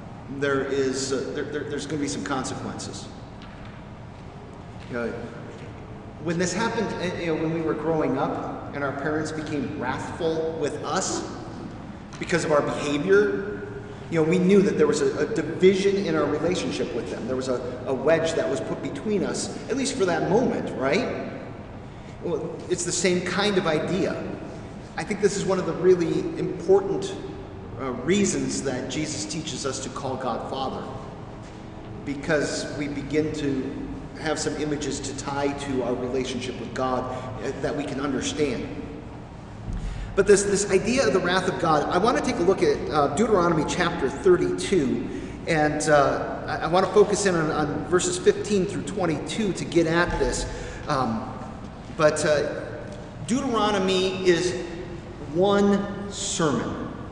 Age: 40-59